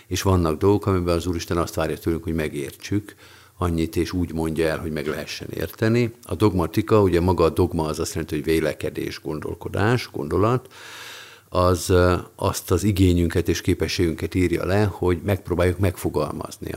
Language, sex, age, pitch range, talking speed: Hungarian, male, 50-69, 80-95 Hz, 155 wpm